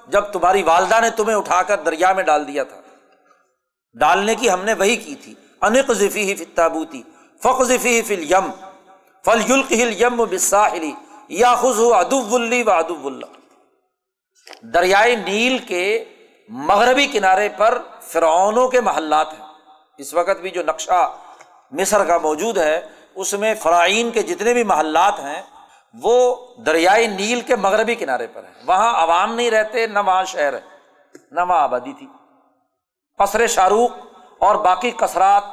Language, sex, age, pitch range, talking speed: Urdu, male, 50-69, 185-250 Hz, 135 wpm